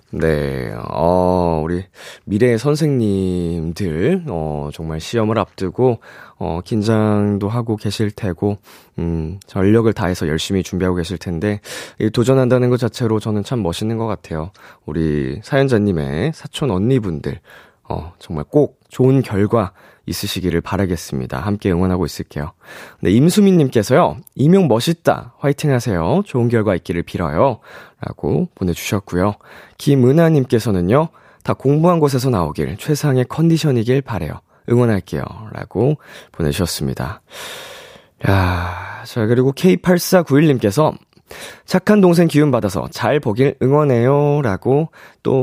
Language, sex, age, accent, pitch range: Korean, male, 20-39, native, 90-135 Hz